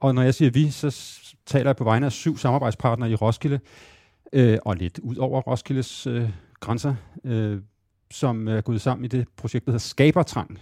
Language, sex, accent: Danish, male, native